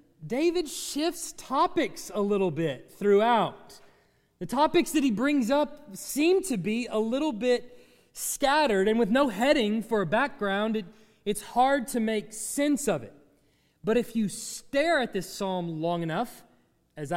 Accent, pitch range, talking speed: American, 190-270 Hz, 155 wpm